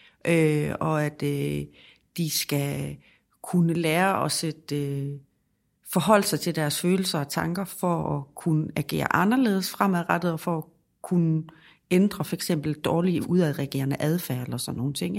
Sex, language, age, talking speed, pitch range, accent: female, Danish, 40-59, 150 wpm, 160-195 Hz, native